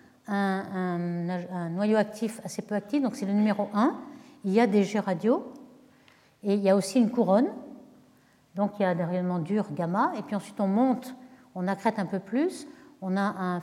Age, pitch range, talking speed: 60-79, 185-250 Hz, 200 wpm